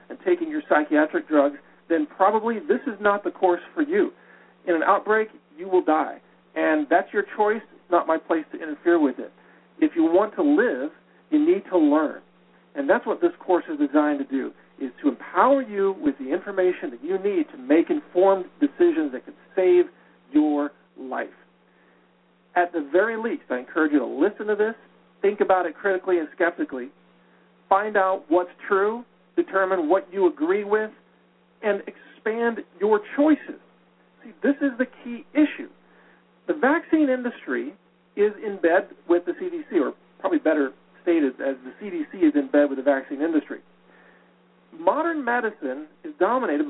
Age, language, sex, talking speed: 50-69, English, male, 170 wpm